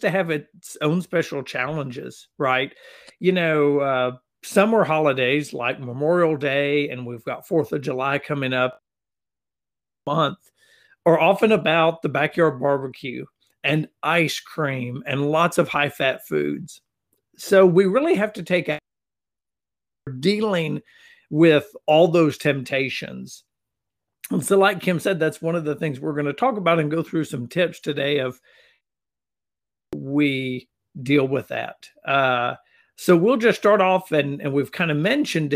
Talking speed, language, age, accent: 145 wpm, English, 50-69, American